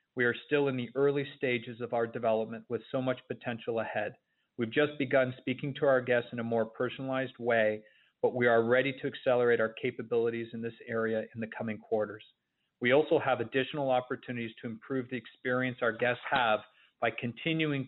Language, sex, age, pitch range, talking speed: English, male, 40-59, 115-130 Hz, 190 wpm